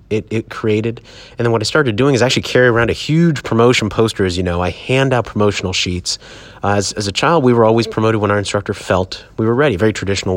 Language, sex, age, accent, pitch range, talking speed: English, male, 30-49, American, 95-125 Hz, 250 wpm